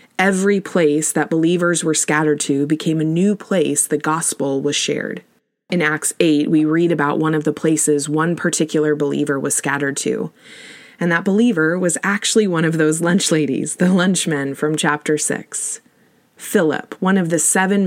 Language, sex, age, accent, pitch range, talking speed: English, female, 20-39, American, 150-190 Hz, 170 wpm